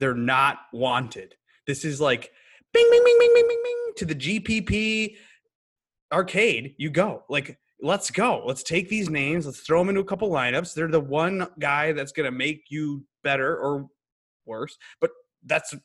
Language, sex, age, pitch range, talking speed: English, male, 20-39, 140-185 Hz, 180 wpm